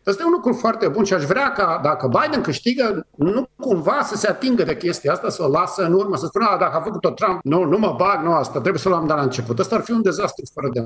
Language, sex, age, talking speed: Romanian, male, 50-69, 300 wpm